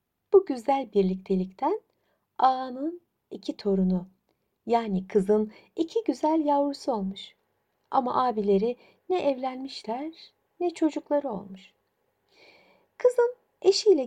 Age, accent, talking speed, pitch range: 60-79, native, 90 wpm, 190-285 Hz